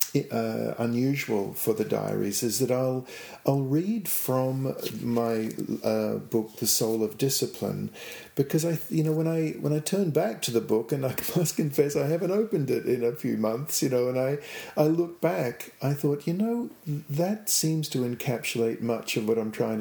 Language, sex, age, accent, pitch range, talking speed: English, male, 50-69, Australian, 110-150 Hz, 190 wpm